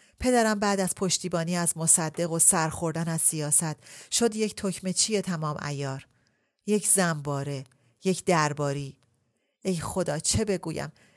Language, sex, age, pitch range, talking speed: Persian, female, 40-59, 145-190 Hz, 130 wpm